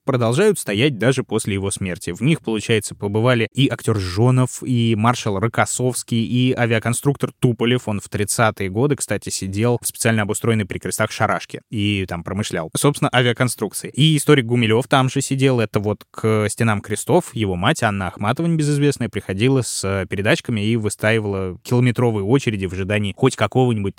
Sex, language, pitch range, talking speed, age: male, Russian, 105-135 Hz, 160 wpm, 20-39